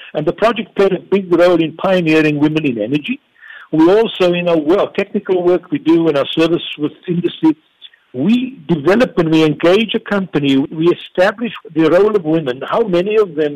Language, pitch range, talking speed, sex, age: English, 150-200 Hz, 190 wpm, male, 60-79